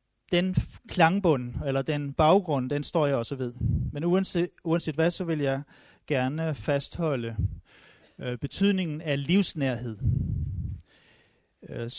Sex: male